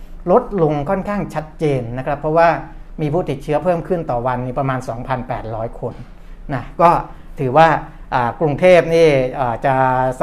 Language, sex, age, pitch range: Thai, male, 60-79, 125-160 Hz